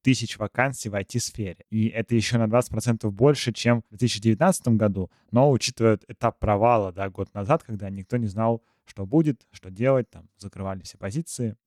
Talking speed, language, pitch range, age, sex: 170 wpm, Russian, 100-130 Hz, 20-39, male